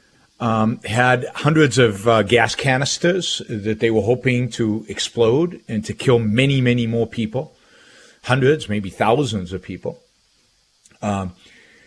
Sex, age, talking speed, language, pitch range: male, 50-69, 130 wpm, English, 95-120 Hz